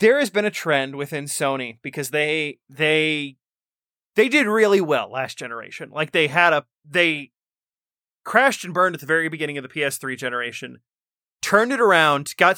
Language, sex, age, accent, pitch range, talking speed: English, male, 30-49, American, 135-175 Hz, 170 wpm